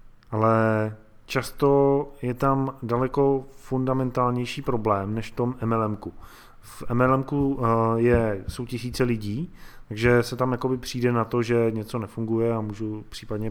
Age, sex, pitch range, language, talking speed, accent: 20-39, male, 110-135 Hz, Czech, 130 wpm, native